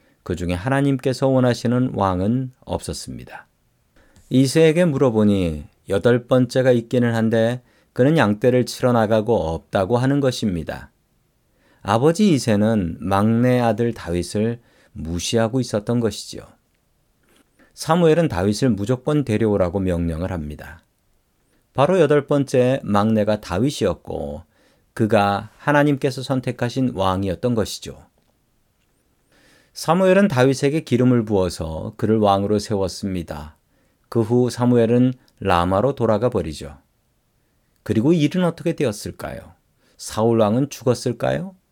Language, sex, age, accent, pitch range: Korean, male, 40-59, native, 100-130 Hz